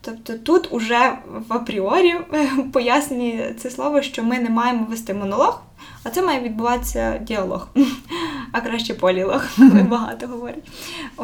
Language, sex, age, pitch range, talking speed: Ukrainian, female, 10-29, 225-280 Hz, 130 wpm